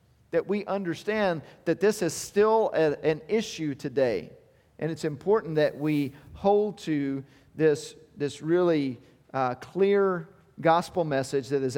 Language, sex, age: English, male, 40-59